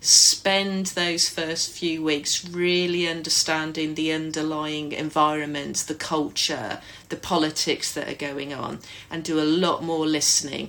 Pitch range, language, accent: 155-180 Hz, English, British